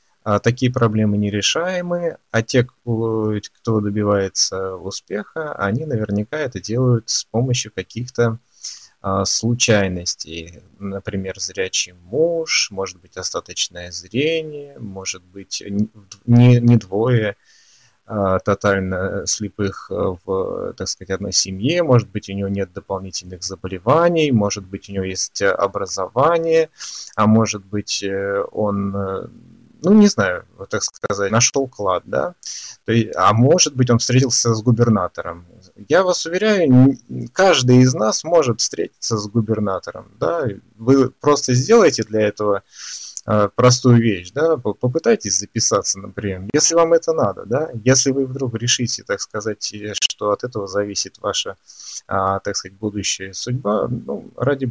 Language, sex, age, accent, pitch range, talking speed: Russian, male, 20-39, native, 100-125 Hz, 125 wpm